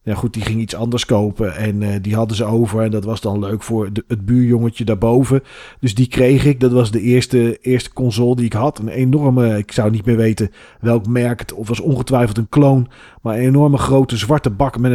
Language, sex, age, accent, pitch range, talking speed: Dutch, male, 40-59, Dutch, 115-140 Hz, 230 wpm